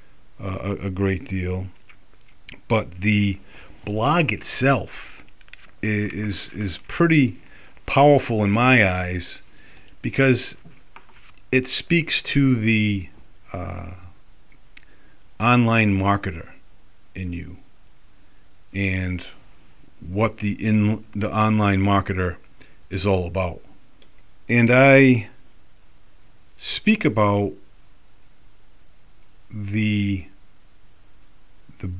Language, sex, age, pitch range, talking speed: English, male, 40-59, 95-110 Hz, 80 wpm